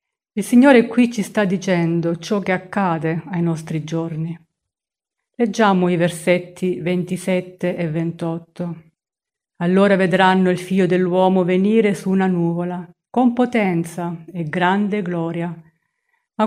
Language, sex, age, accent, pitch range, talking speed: Italian, female, 50-69, native, 170-210 Hz, 120 wpm